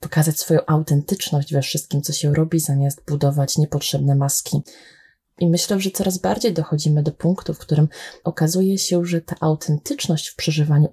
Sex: female